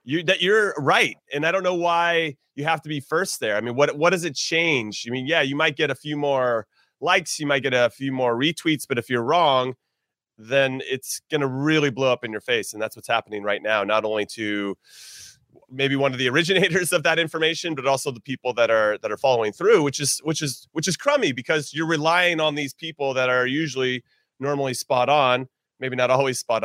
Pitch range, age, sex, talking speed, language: 125-160 Hz, 30-49, male, 230 wpm, English